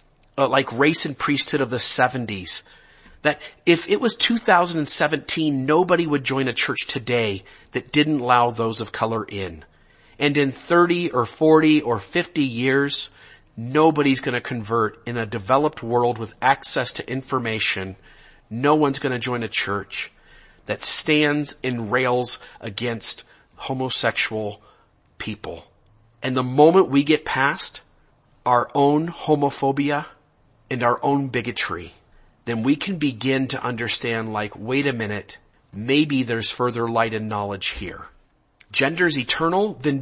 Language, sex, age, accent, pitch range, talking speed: English, male, 40-59, American, 115-150 Hz, 140 wpm